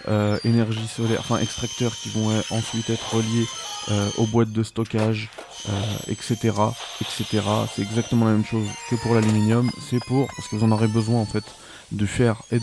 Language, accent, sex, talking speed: French, French, male, 185 wpm